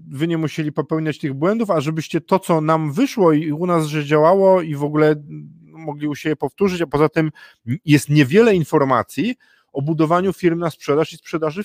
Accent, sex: native, male